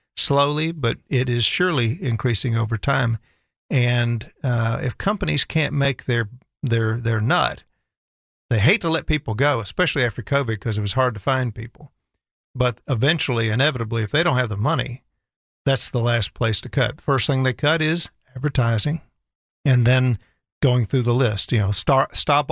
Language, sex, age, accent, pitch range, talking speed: English, male, 50-69, American, 115-135 Hz, 175 wpm